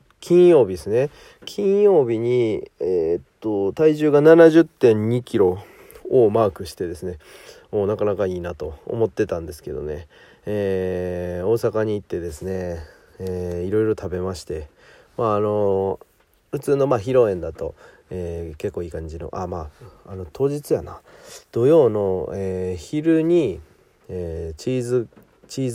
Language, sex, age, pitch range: Japanese, male, 40-59, 85-130 Hz